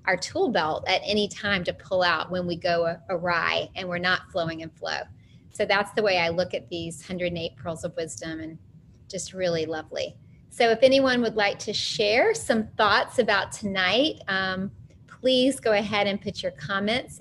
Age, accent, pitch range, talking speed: 30-49, American, 170-205 Hz, 190 wpm